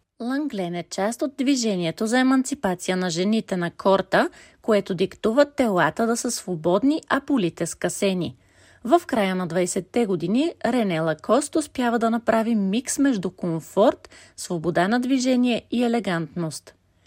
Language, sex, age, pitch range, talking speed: Bulgarian, female, 40-59, 180-260 Hz, 135 wpm